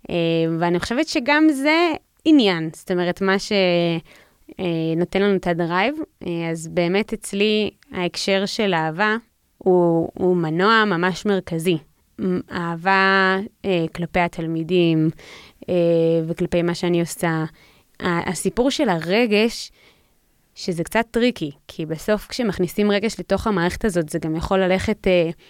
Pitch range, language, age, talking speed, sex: 170-205 Hz, Hebrew, 20-39, 110 wpm, female